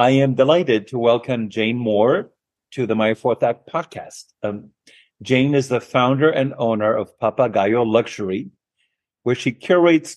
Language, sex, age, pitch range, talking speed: English, male, 50-69, 110-135 Hz, 155 wpm